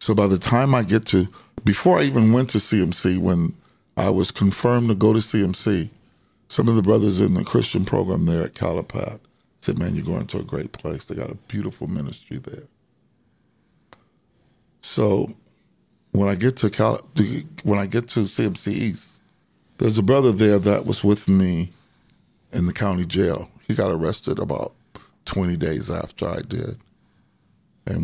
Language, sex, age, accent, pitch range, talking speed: English, male, 50-69, American, 95-110 Hz, 185 wpm